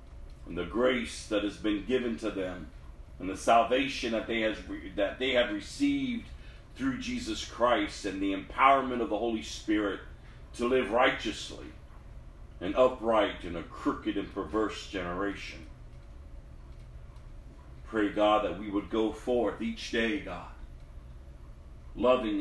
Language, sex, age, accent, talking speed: English, male, 40-59, American, 140 wpm